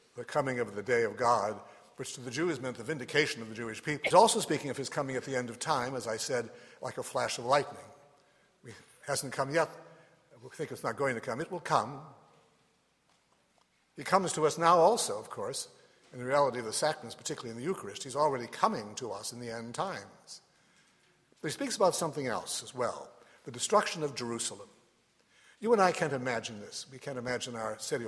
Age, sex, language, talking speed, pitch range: 60-79, male, English, 220 wpm, 120-160 Hz